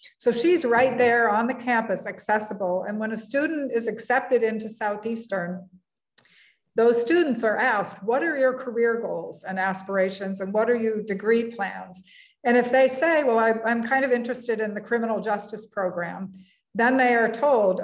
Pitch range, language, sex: 205-245 Hz, English, female